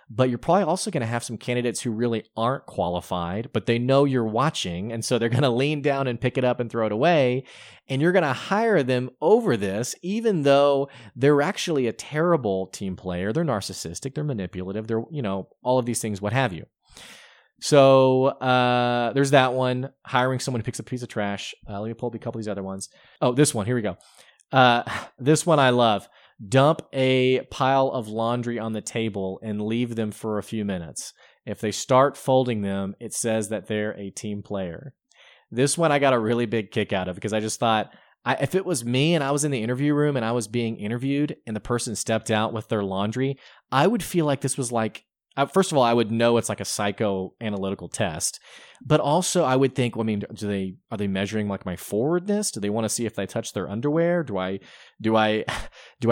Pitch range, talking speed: 105-135 Hz, 230 wpm